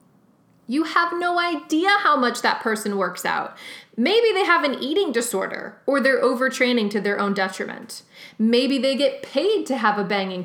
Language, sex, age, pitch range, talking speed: English, female, 20-39, 210-280 Hz, 180 wpm